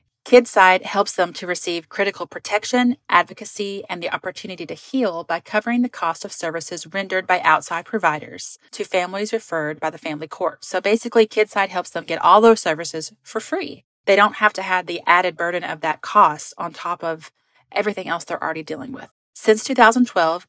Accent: American